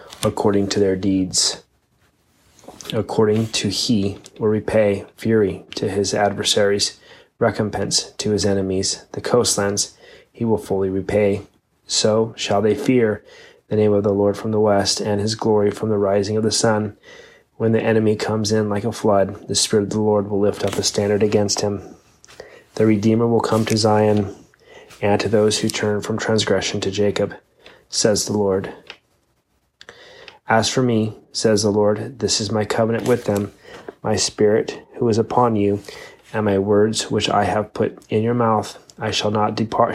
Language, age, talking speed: English, 30-49, 170 wpm